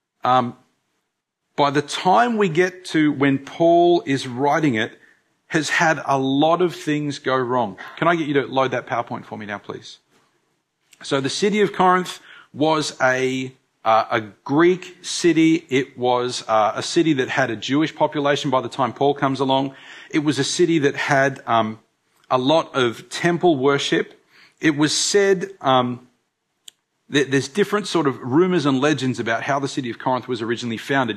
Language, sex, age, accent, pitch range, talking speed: English, male, 40-59, Australian, 125-160 Hz, 175 wpm